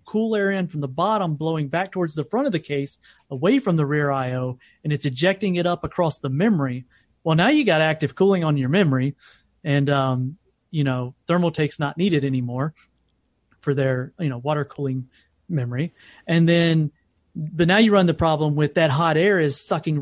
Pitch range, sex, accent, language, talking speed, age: 140-170 Hz, male, American, English, 200 wpm, 30-49